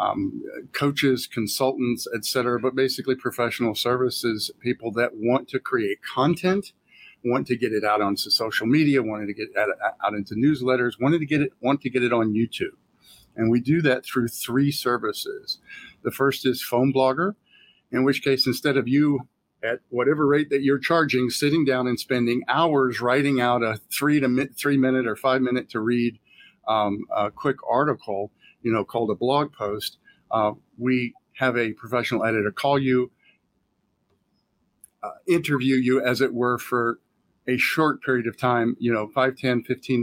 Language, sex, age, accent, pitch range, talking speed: English, male, 50-69, American, 115-135 Hz, 175 wpm